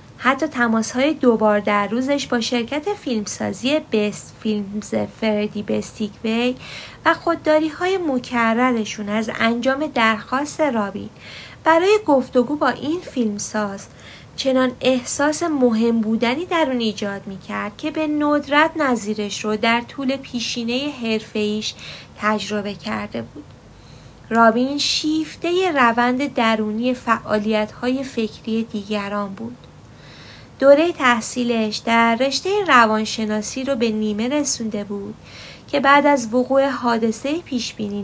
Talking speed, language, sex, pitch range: 115 wpm, Persian, female, 215-280 Hz